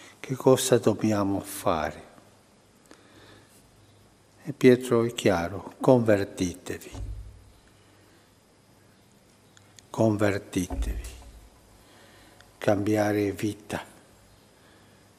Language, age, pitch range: Italian, 60-79, 100-120 Hz